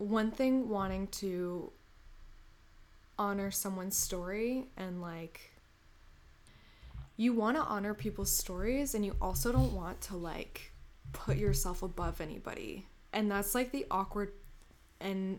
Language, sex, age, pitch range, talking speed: English, female, 20-39, 175-205 Hz, 125 wpm